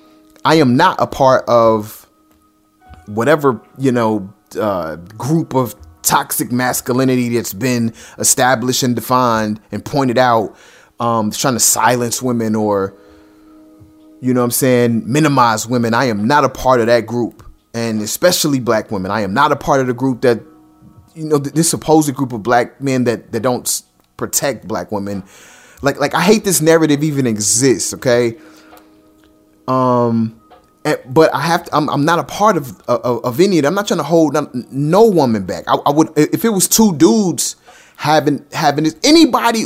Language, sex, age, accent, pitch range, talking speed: English, male, 30-49, American, 110-155 Hz, 175 wpm